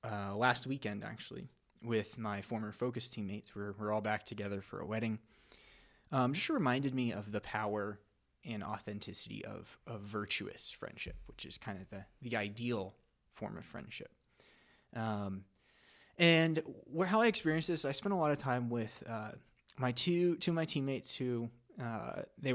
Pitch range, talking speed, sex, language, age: 105-130 Hz, 170 wpm, male, English, 20-39